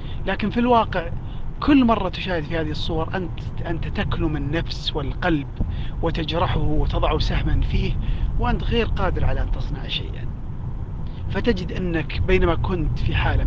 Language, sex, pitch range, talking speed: Arabic, male, 125-180 Hz, 140 wpm